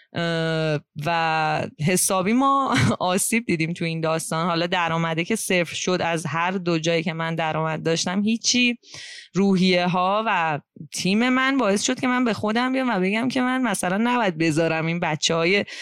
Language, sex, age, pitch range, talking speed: Persian, female, 20-39, 165-230 Hz, 165 wpm